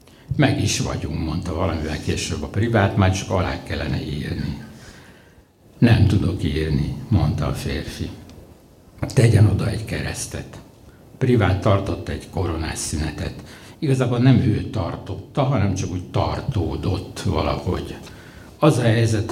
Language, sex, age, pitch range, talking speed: Hungarian, male, 60-79, 85-115 Hz, 125 wpm